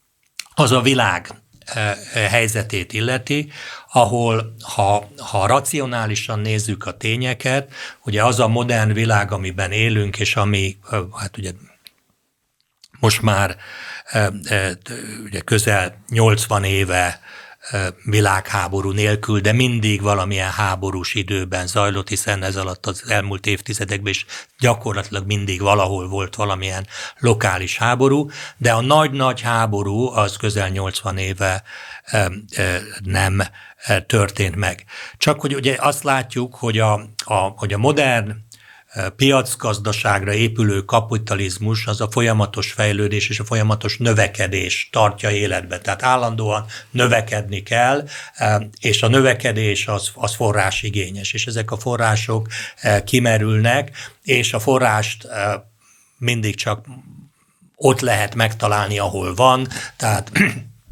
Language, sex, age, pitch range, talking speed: Hungarian, male, 60-79, 100-120 Hz, 105 wpm